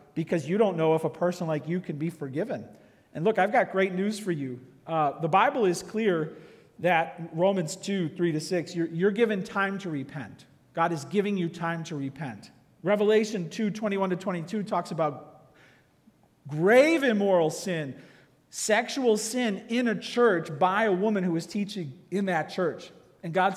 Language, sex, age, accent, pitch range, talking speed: English, male, 40-59, American, 165-230 Hz, 180 wpm